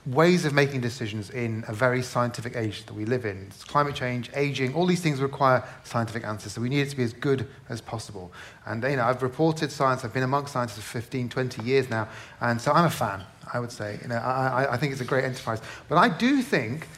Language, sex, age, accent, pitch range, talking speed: English, male, 30-49, British, 120-155 Hz, 245 wpm